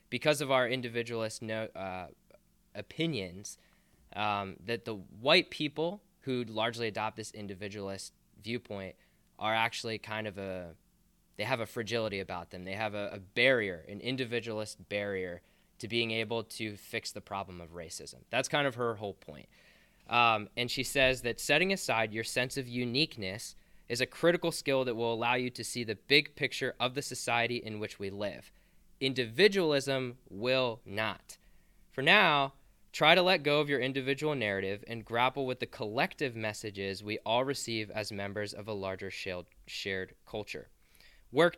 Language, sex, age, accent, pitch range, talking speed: English, male, 20-39, American, 100-130 Hz, 160 wpm